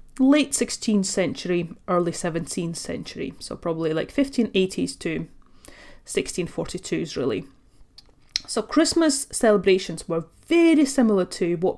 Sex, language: female, English